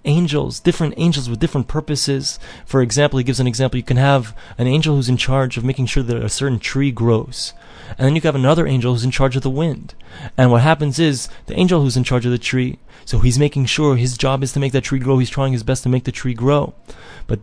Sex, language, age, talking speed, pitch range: male, English, 20-39, 260 wpm, 120-140 Hz